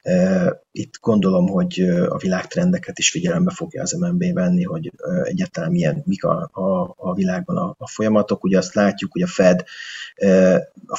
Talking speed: 160 wpm